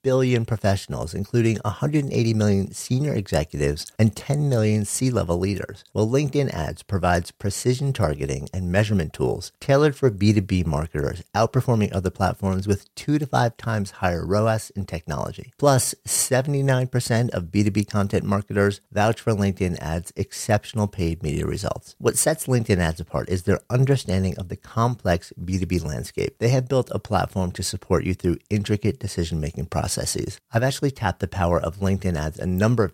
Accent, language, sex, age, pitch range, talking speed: American, English, male, 50-69, 90-120 Hz, 160 wpm